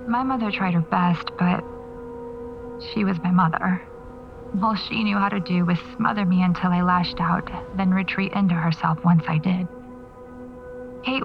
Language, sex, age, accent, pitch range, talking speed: English, female, 30-49, American, 180-205 Hz, 165 wpm